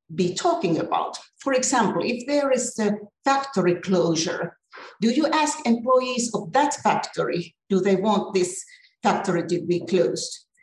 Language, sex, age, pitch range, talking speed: English, female, 50-69, 185-255 Hz, 145 wpm